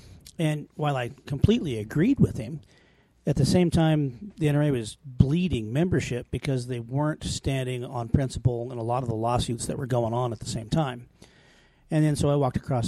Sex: male